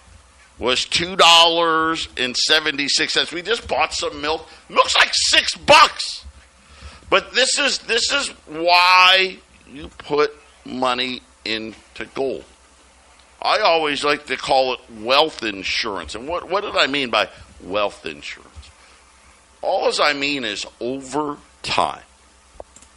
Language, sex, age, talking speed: English, male, 50-69, 120 wpm